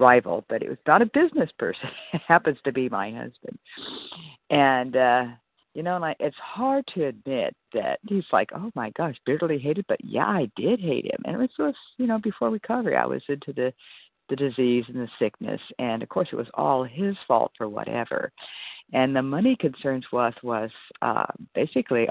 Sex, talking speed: female, 200 wpm